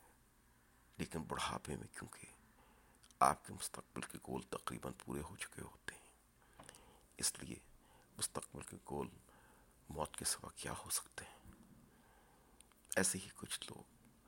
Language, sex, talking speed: Urdu, male, 130 wpm